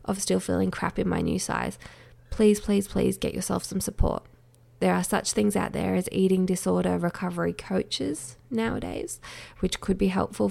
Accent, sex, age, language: Australian, female, 20-39, English